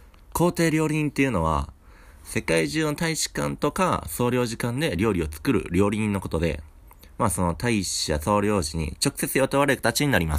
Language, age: Japanese, 40-59